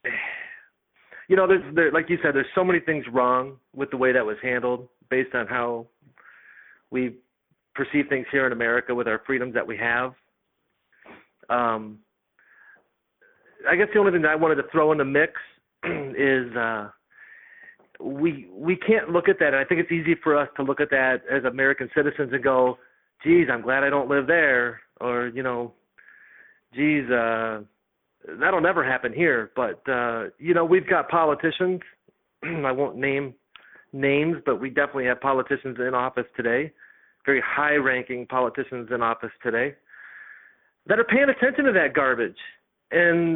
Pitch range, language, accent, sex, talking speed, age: 130-180 Hz, English, American, male, 165 wpm, 40-59